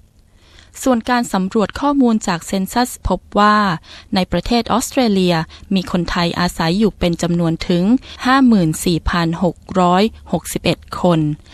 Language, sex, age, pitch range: Thai, female, 20-39, 170-215 Hz